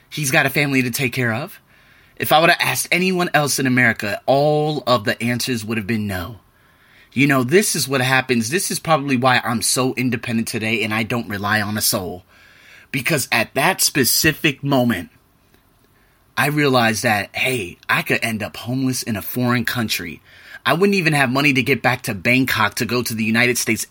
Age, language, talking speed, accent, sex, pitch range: 30-49, English, 200 wpm, American, male, 120-200 Hz